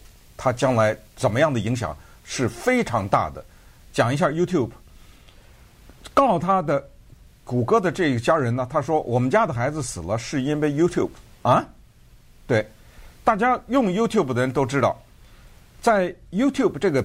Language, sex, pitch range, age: Chinese, male, 110-155 Hz, 50-69